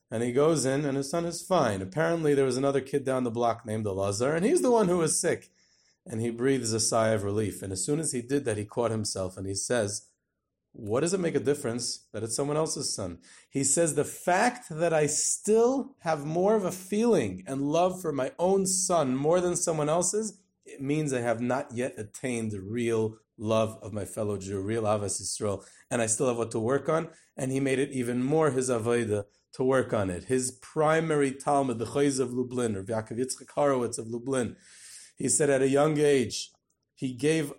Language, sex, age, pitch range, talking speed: English, male, 30-49, 120-165 Hz, 215 wpm